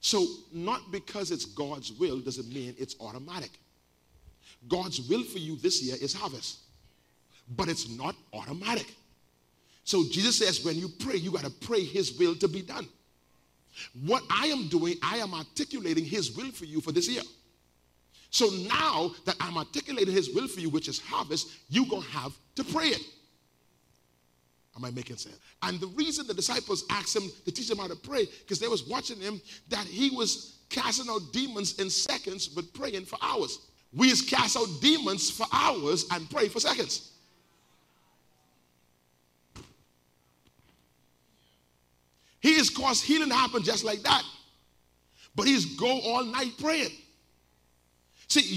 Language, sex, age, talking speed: English, male, 40-59, 165 wpm